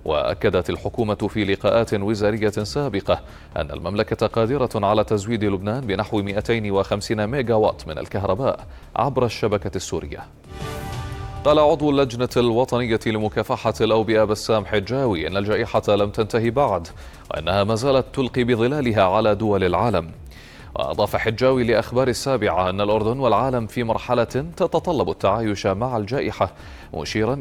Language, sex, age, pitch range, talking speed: Arabic, male, 30-49, 100-115 Hz, 125 wpm